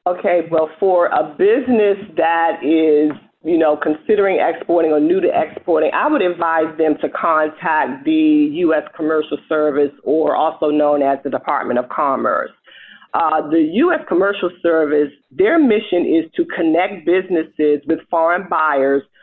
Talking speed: 145 wpm